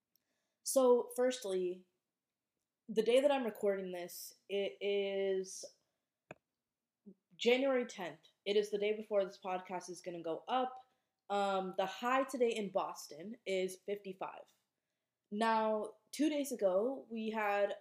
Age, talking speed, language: 20-39, 130 wpm, English